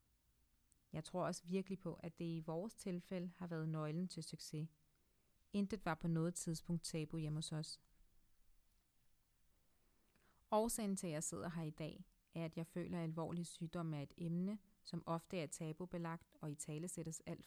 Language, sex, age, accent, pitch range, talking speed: Danish, female, 30-49, native, 155-185 Hz, 170 wpm